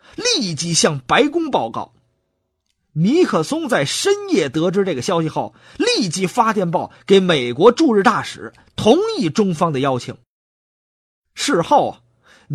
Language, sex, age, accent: Chinese, male, 30-49, native